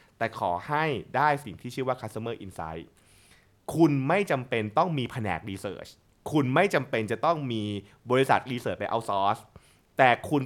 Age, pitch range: 20-39, 110-165 Hz